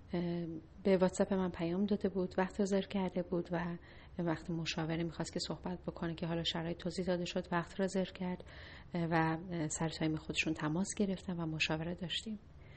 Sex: female